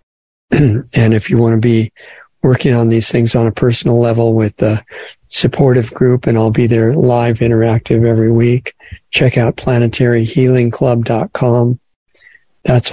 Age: 50-69